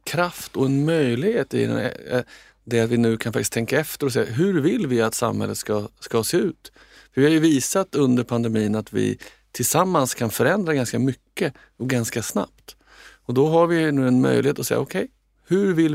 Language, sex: Swedish, male